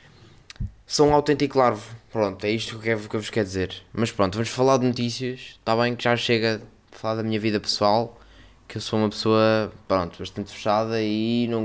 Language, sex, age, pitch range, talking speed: Portuguese, male, 20-39, 105-135 Hz, 200 wpm